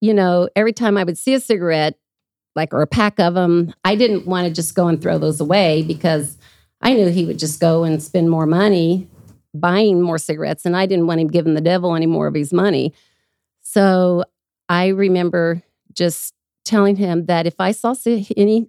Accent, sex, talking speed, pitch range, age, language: American, female, 200 wpm, 165-205 Hz, 40-59, English